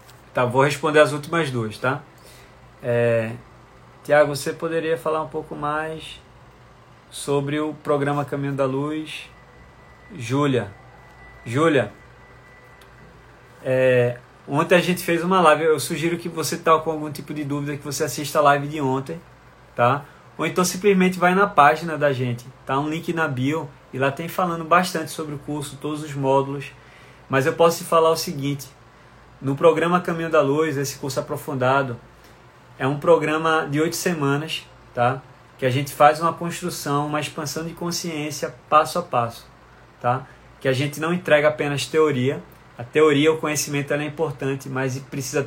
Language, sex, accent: Portuguese, male, Brazilian